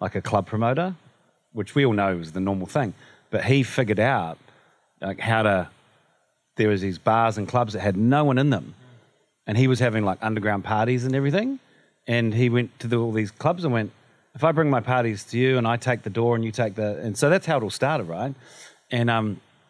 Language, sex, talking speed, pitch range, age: English, male, 230 wpm, 105-135 Hz, 30-49